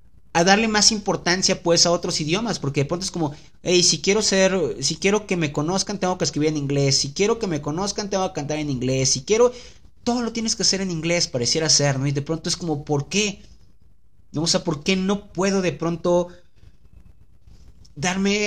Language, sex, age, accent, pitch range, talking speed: Spanish, male, 30-49, Mexican, 140-180 Hz, 210 wpm